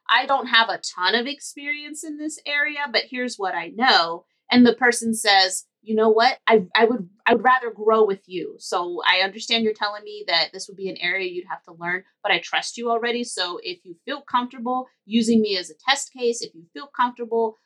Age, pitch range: 30-49, 195-275 Hz